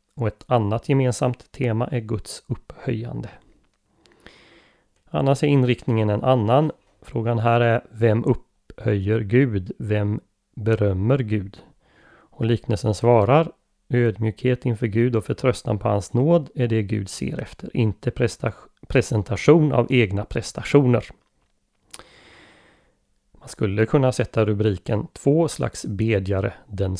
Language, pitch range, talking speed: Swedish, 105-125 Hz, 120 wpm